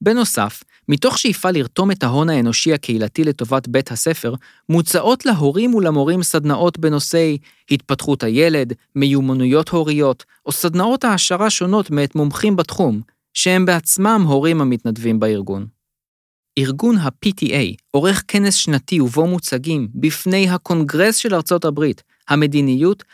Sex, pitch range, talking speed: male, 130-170 Hz, 115 wpm